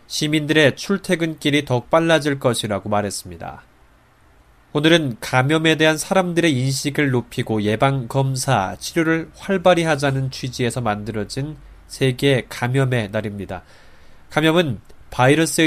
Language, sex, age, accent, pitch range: Korean, male, 20-39, native, 110-155 Hz